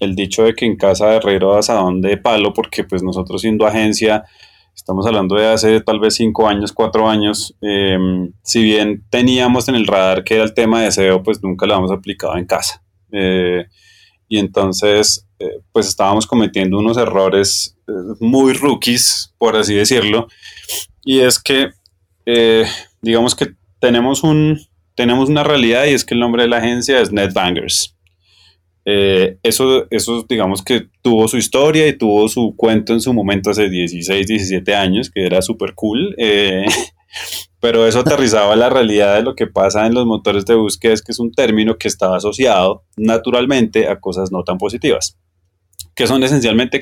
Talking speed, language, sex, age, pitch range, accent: 175 wpm, Spanish, male, 20-39, 95-115 Hz, Colombian